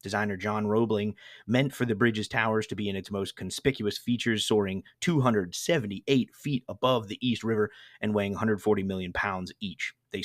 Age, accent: 30-49, American